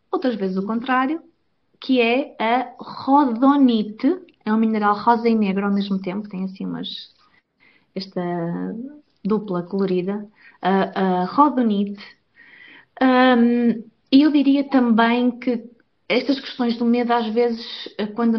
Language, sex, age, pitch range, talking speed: Portuguese, female, 20-39, 215-270 Hz, 125 wpm